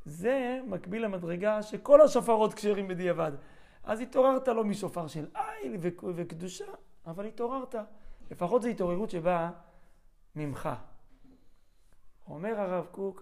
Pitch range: 165-220 Hz